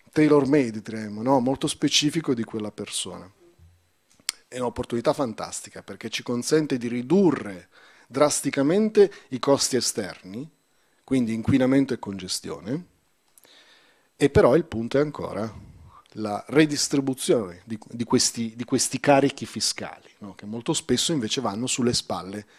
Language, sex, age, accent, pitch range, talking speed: Italian, male, 40-59, native, 105-135 Hz, 130 wpm